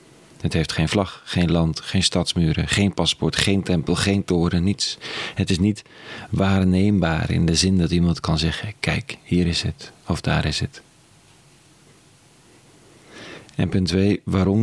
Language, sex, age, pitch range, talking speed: Dutch, male, 40-59, 85-105 Hz, 155 wpm